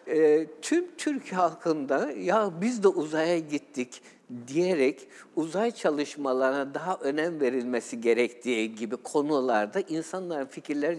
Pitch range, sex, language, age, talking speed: 135-205 Hz, male, Turkish, 60-79, 110 wpm